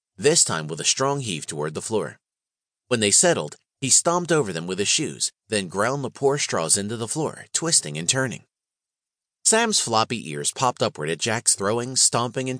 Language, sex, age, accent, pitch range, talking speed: English, male, 30-49, American, 110-160 Hz, 190 wpm